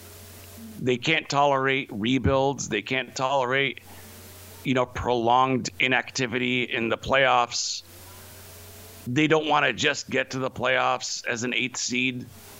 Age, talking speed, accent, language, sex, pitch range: 50-69, 130 wpm, American, English, male, 95-135 Hz